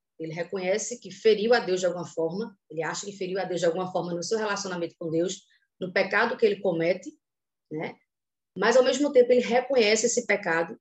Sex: female